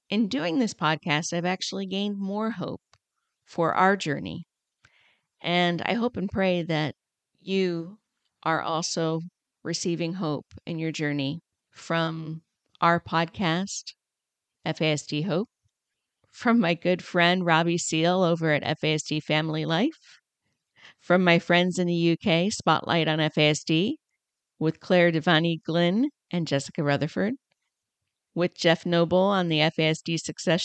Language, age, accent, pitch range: English, 50-69, American, 160-195 Hz